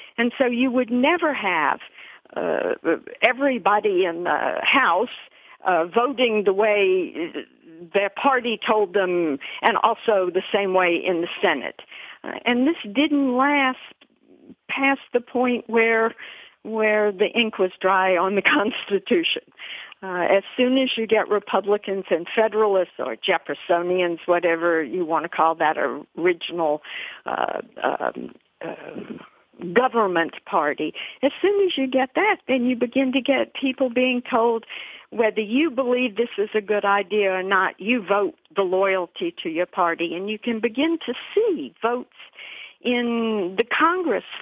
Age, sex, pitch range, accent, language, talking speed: 60-79, female, 190-250 Hz, American, English, 145 wpm